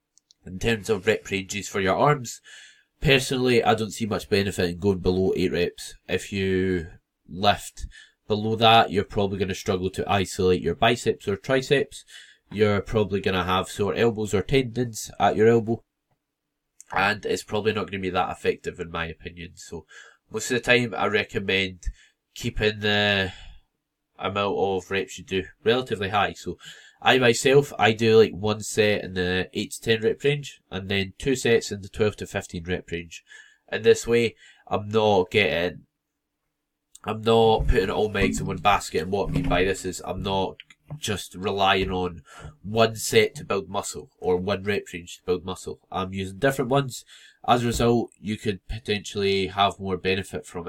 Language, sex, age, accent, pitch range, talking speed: English, male, 20-39, British, 95-115 Hz, 180 wpm